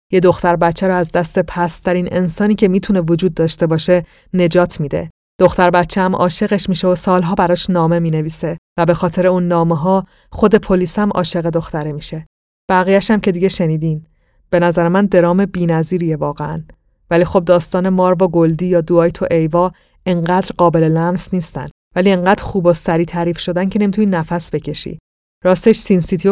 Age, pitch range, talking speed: 30-49, 165-185 Hz, 170 wpm